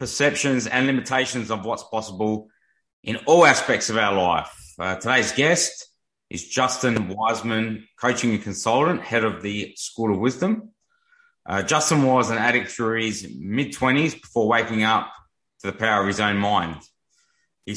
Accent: Australian